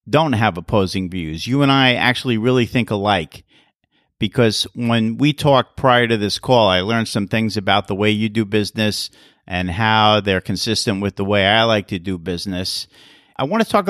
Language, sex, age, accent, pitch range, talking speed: English, male, 50-69, American, 100-125 Hz, 195 wpm